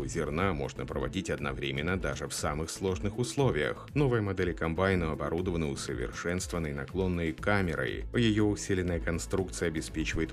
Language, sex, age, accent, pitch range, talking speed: Russian, male, 30-49, native, 80-100 Hz, 115 wpm